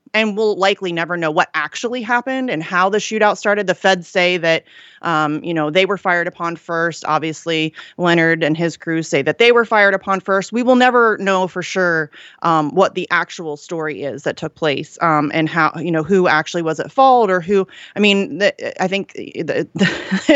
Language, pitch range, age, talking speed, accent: English, 155-190 Hz, 30-49, 210 wpm, American